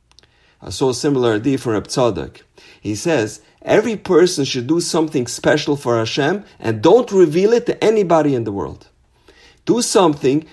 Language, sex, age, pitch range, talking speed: English, male, 50-69, 135-190 Hz, 165 wpm